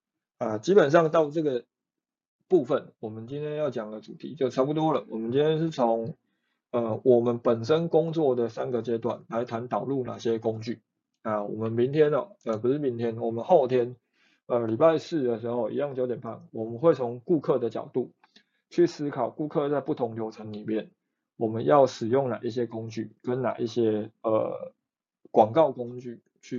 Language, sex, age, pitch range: Chinese, male, 20-39, 115-145 Hz